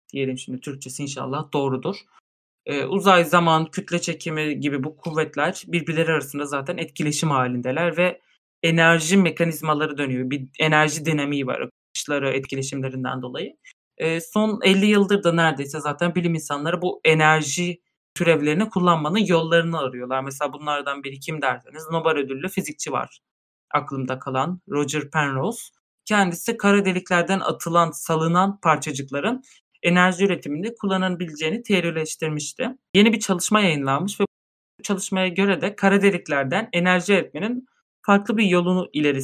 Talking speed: 130 wpm